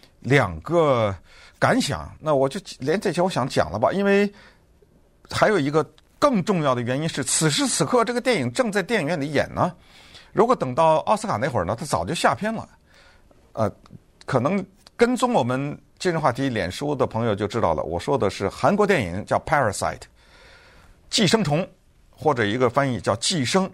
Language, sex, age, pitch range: Chinese, male, 50-69, 125-200 Hz